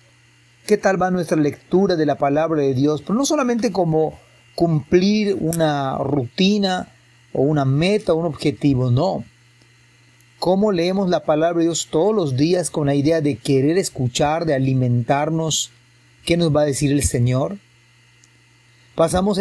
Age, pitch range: 30-49, 125-170 Hz